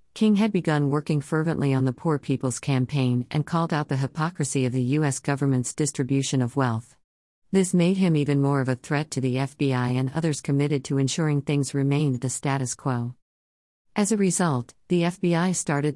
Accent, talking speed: American, 185 wpm